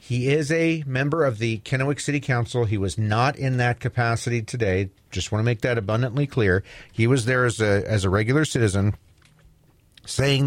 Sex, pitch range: male, 105-130 Hz